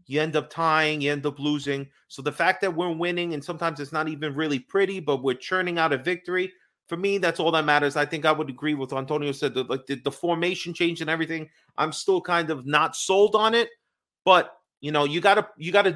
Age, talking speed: 30-49, 235 wpm